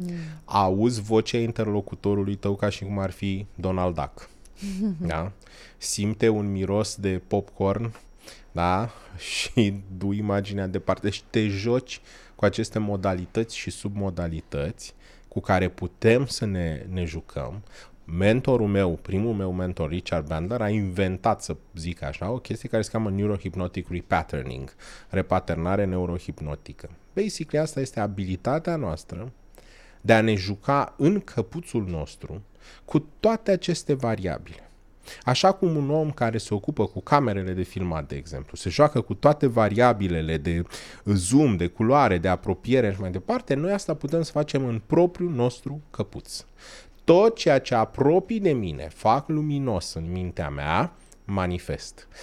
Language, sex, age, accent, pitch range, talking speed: Romanian, male, 20-39, native, 90-120 Hz, 140 wpm